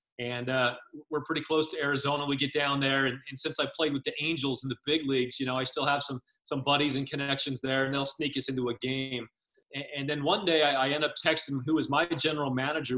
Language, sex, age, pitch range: English, male, 30-49, 130-165 Hz